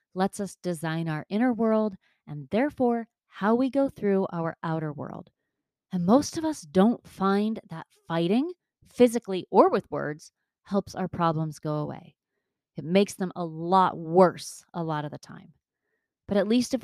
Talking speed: 170 wpm